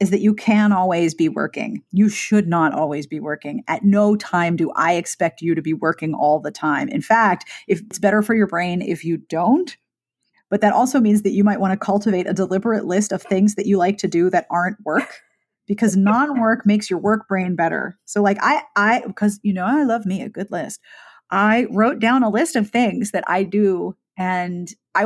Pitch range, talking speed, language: 180-225 Hz, 220 wpm, English